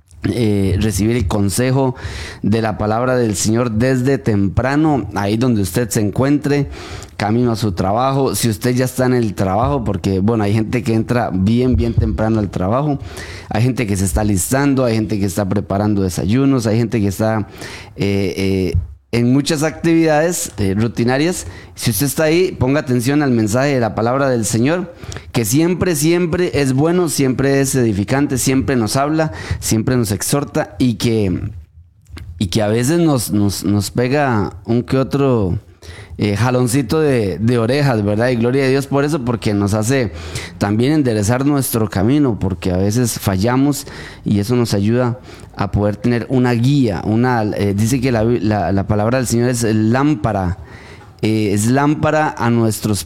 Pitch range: 105-130 Hz